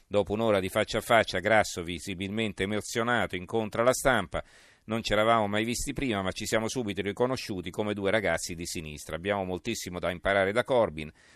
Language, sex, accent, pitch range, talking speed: Italian, male, native, 90-110 Hz, 180 wpm